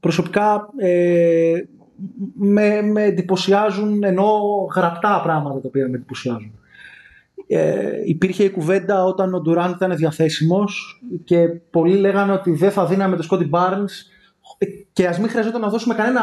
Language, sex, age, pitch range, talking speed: Greek, male, 30-49, 160-200 Hz, 140 wpm